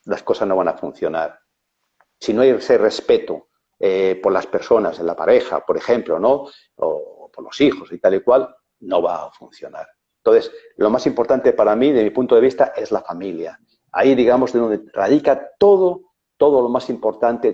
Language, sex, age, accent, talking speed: Spanish, male, 50-69, Spanish, 195 wpm